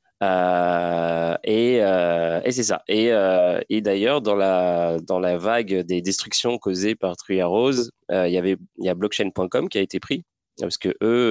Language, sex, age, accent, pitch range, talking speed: French, male, 20-39, French, 90-110 Hz, 180 wpm